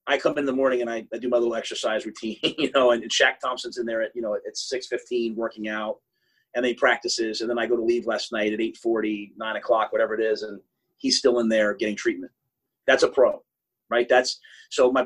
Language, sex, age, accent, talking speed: English, male, 30-49, American, 240 wpm